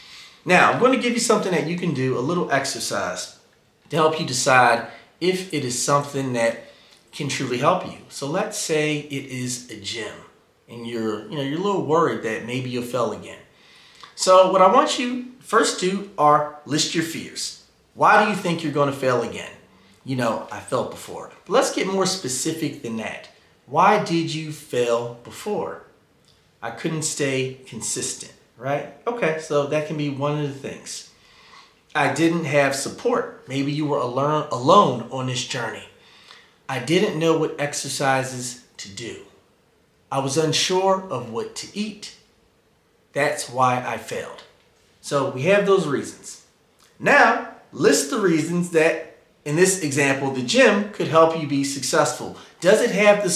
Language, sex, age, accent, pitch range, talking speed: English, male, 30-49, American, 130-180 Hz, 170 wpm